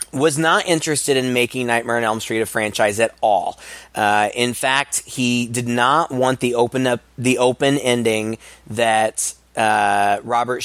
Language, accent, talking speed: English, American, 150 wpm